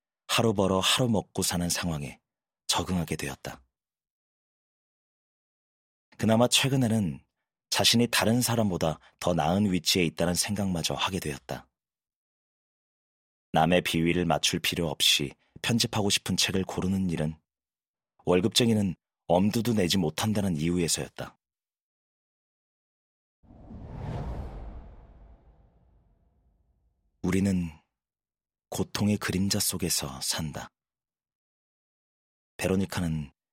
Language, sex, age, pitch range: Korean, male, 30-49, 80-95 Hz